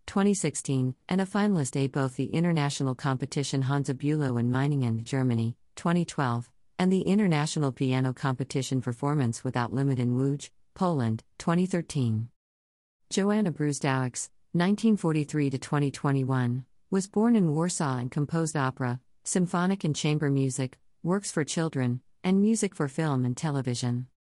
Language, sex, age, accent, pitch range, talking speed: English, female, 50-69, American, 135-165 Hz, 125 wpm